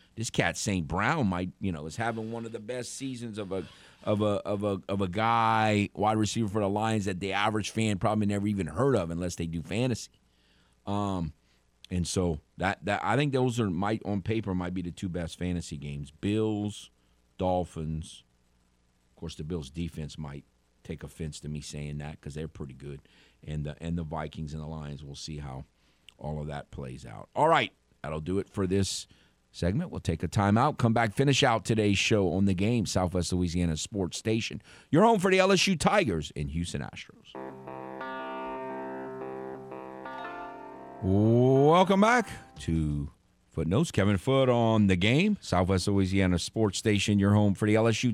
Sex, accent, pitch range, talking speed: male, American, 75-110 Hz, 180 wpm